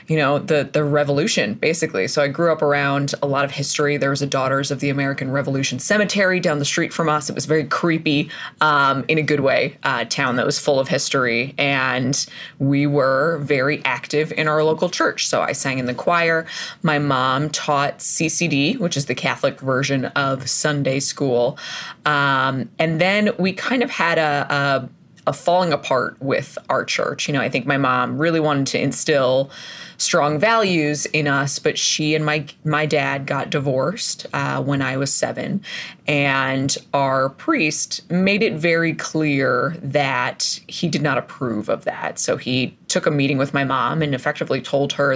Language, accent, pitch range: English, American, 135-160 Hz